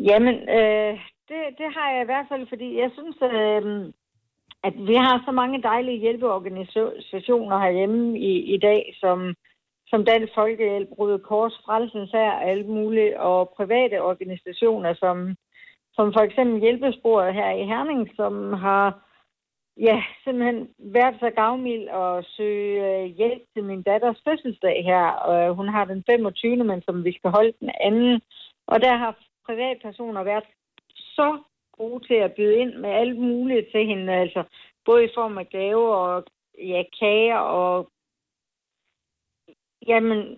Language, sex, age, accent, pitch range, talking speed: Danish, female, 60-79, native, 195-240 Hz, 150 wpm